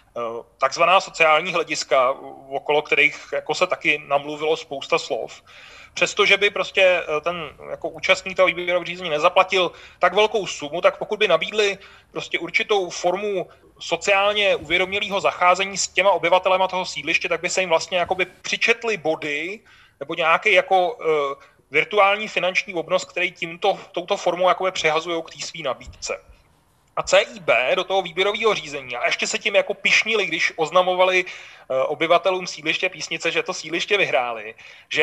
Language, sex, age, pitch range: Czech, male, 30-49, 170-205 Hz